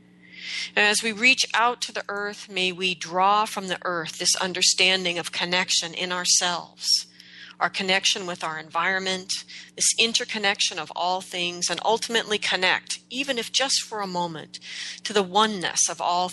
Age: 40-59